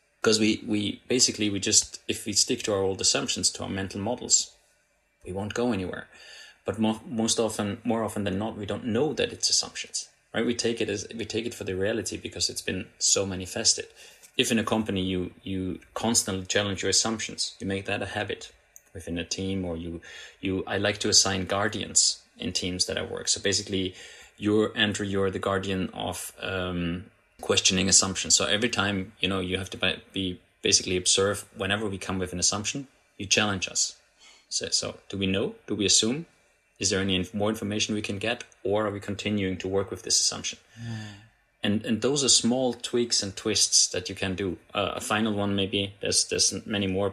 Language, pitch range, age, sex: English, 95-110 Hz, 30-49, male